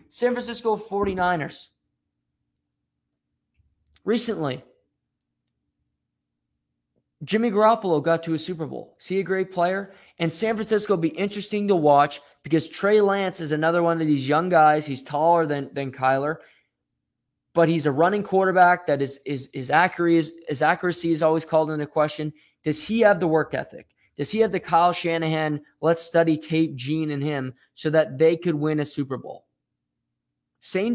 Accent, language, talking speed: American, English, 165 wpm